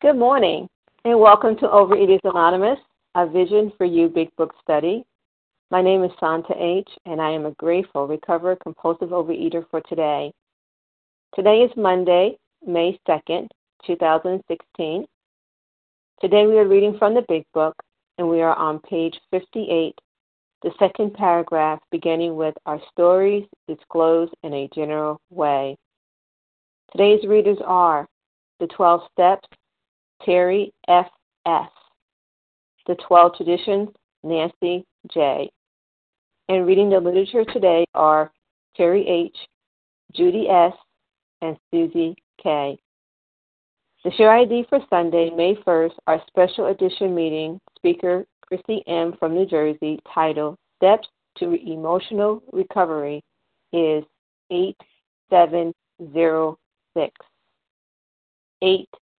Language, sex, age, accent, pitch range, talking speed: English, female, 50-69, American, 160-195 Hz, 115 wpm